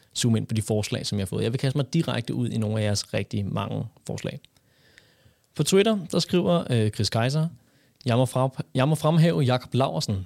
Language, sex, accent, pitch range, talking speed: Danish, male, native, 115-145 Hz, 195 wpm